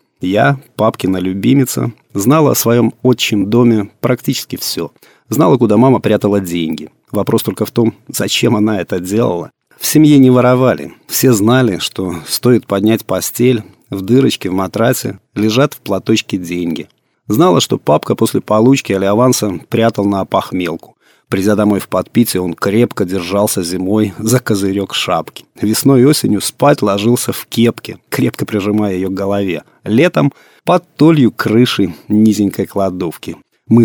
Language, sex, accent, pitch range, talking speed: Russian, male, native, 100-125 Hz, 140 wpm